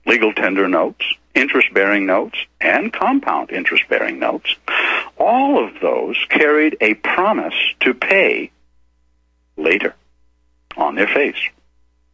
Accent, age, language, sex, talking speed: American, 60-79, English, male, 105 wpm